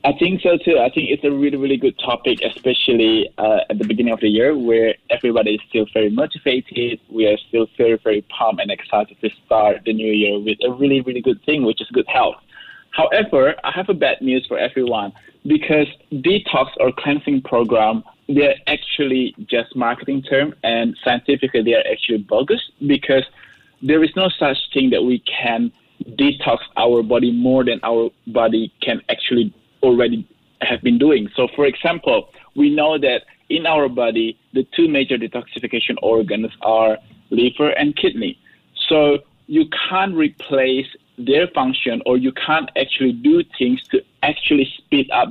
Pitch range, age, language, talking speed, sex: 120-165 Hz, 20-39, English, 170 wpm, male